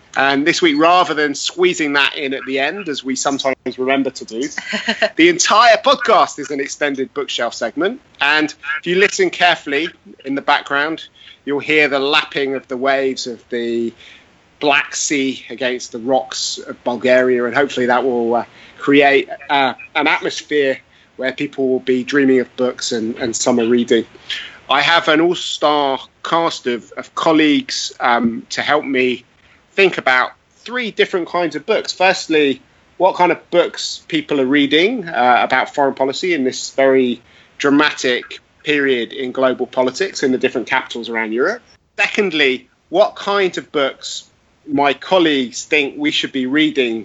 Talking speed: 160 wpm